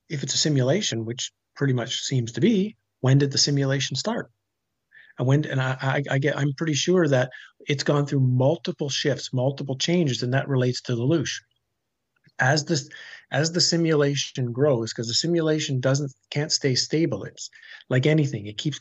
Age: 50-69